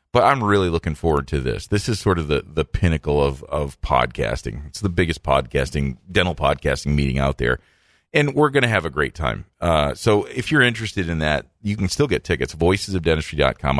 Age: 40-59